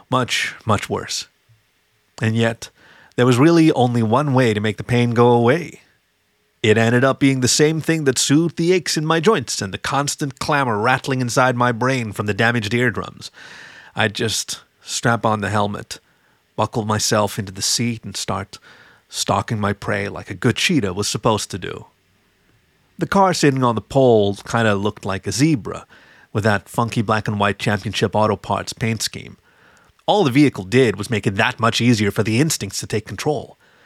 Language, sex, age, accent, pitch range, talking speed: English, male, 30-49, American, 105-125 Hz, 185 wpm